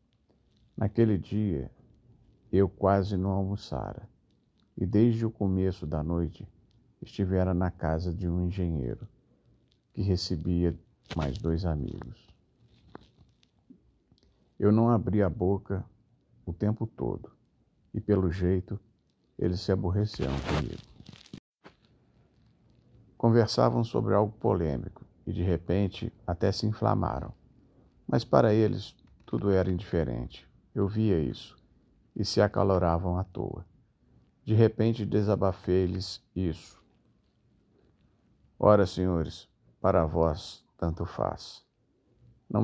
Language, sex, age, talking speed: Portuguese, male, 50-69, 105 wpm